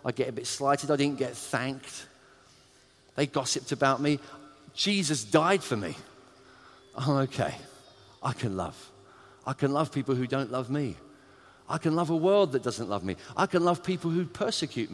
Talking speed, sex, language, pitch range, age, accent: 180 wpm, male, English, 135-195 Hz, 40-59, British